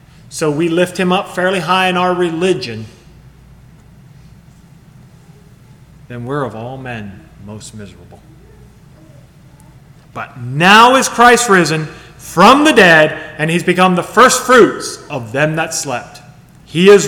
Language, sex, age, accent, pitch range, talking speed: English, male, 30-49, American, 145-190 Hz, 130 wpm